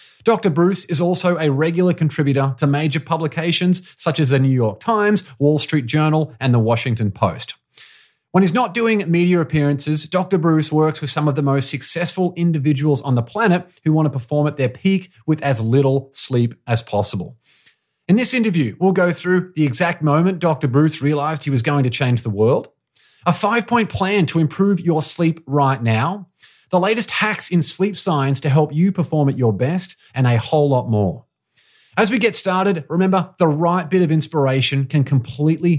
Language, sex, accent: English, male, Australian